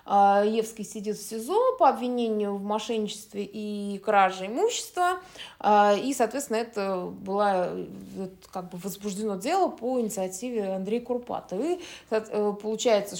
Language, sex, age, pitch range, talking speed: Russian, female, 20-39, 200-245 Hz, 120 wpm